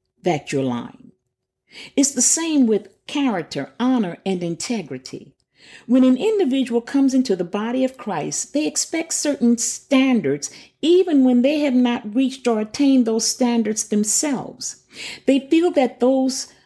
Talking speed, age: 140 wpm, 50-69